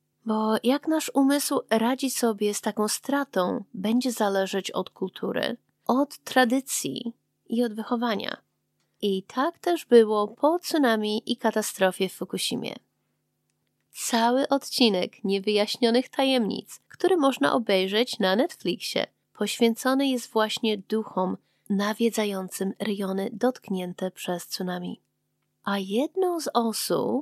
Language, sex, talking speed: Polish, female, 110 wpm